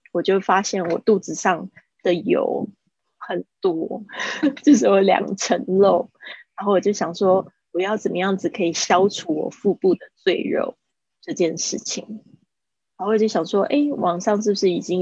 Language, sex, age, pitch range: Chinese, female, 20-39, 180-215 Hz